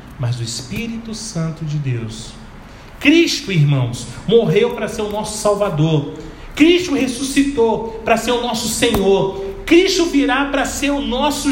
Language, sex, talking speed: Portuguese, male, 140 wpm